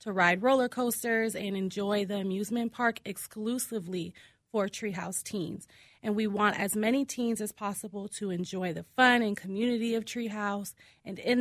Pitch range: 190-225 Hz